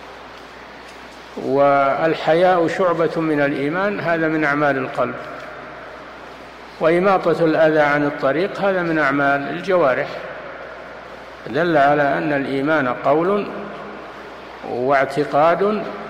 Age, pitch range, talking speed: 60-79, 135-170 Hz, 80 wpm